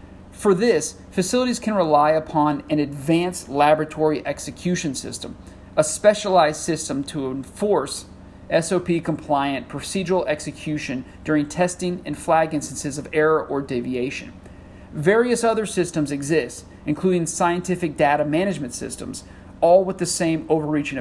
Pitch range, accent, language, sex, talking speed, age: 140-180 Hz, American, English, male, 120 wpm, 40-59